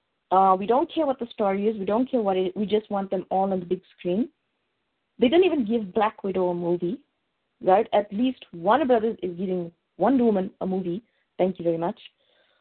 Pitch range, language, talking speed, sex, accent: 195-260 Hz, English, 230 wpm, female, Indian